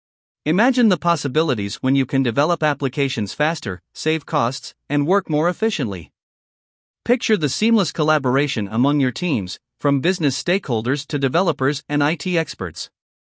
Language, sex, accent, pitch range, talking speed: English, male, American, 135-175 Hz, 135 wpm